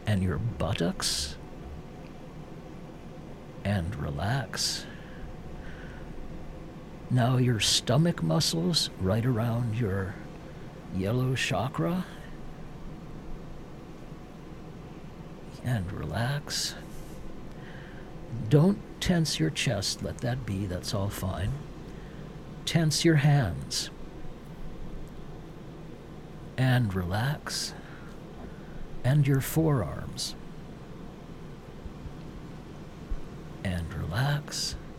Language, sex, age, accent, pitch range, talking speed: English, male, 60-79, American, 115-165 Hz, 60 wpm